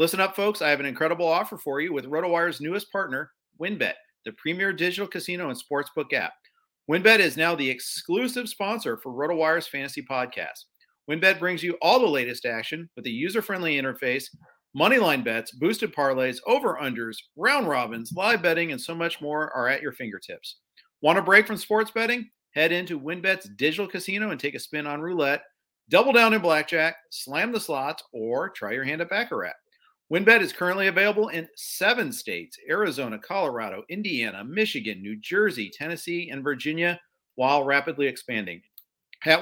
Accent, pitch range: American, 145-200 Hz